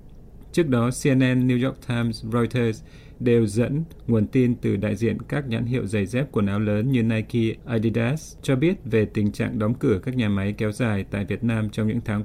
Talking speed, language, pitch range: 210 wpm, Vietnamese, 105-125 Hz